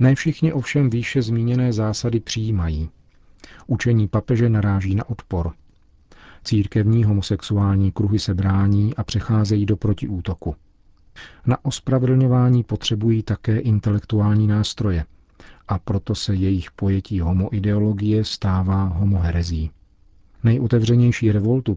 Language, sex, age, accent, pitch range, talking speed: Czech, male, 40-59, native, 90-110 Hz, 100 wpm